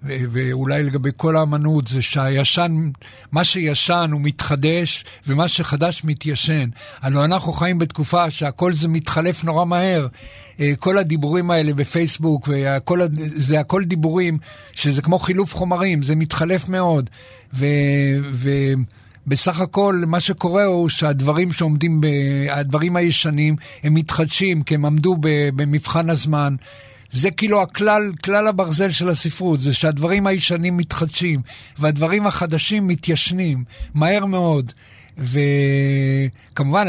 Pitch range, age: 140-175 Hz, 60-79